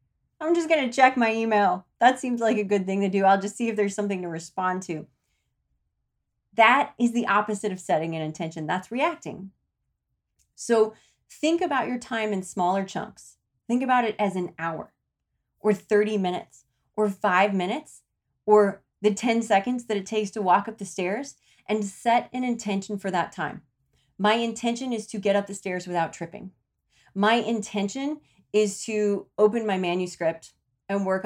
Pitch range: 185-230 Hz